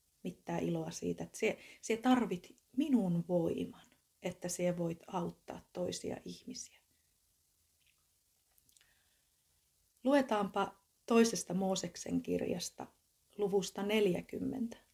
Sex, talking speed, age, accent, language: female, 80 wpm, 30-49, native, Finnish